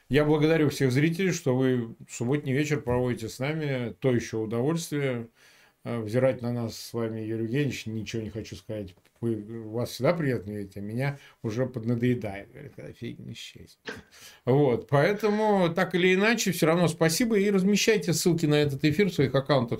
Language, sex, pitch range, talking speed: Ukrainian, male, 120-170 Hz, 165 wpm